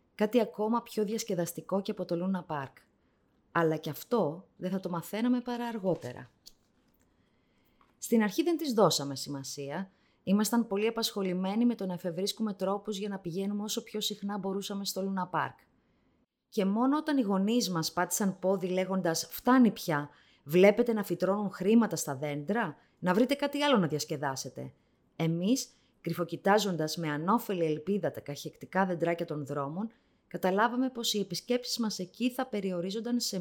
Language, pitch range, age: Greek, 155-215 Hz, 20-39